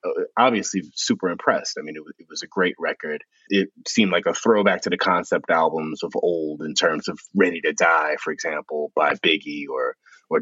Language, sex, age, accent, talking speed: English, male, 30-49, American, 200 wpm